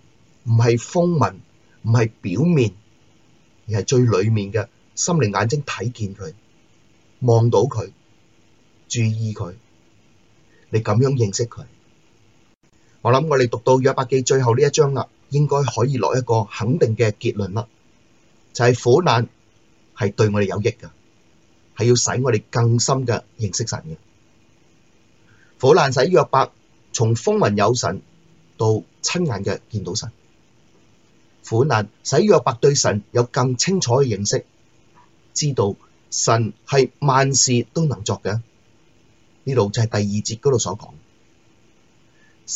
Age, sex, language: 30-49, male, Chinese